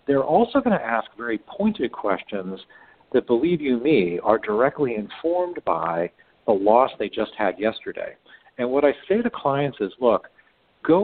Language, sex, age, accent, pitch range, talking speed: English, male, 50-69, American, 105-150 Hz, 170 wpm